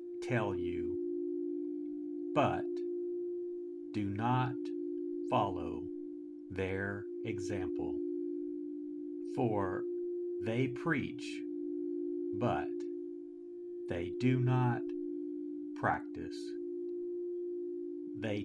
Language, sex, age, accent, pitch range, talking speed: English, male, 50-69, American, 320-345 Hz, 55 wpm